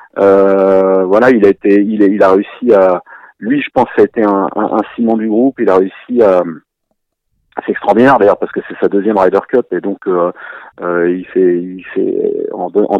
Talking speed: 200 wpm